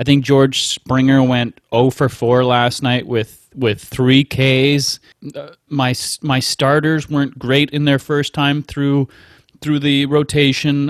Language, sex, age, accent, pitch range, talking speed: English, male, 30-49, American, 130-150 Hz, 155 wpm